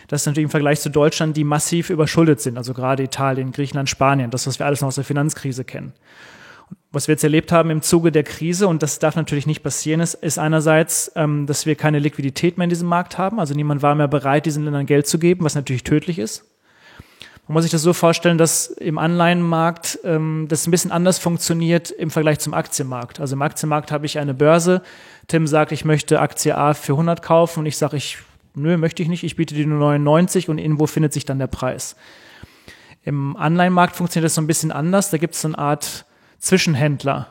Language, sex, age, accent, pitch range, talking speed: German, male, 30-49, German, 145-165 Hz, 215 wpm